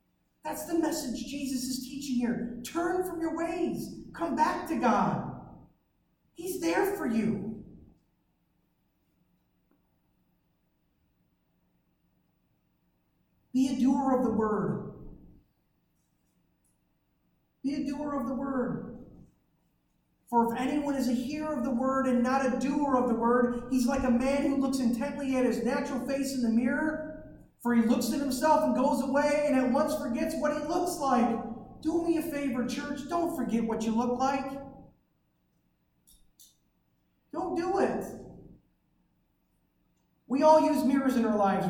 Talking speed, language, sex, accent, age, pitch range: 140 wpm, English, male, American, 50-69, 230-285 Hz